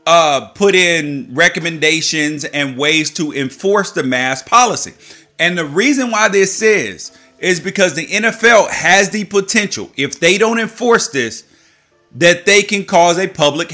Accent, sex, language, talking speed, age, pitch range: American, male, English, 155 wpm, 30-49, 145-195 Hz